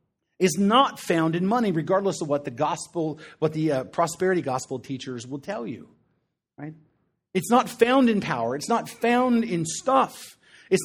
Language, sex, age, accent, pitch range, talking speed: English, male, 30-49, American, 155-240 Hz, 170 wpm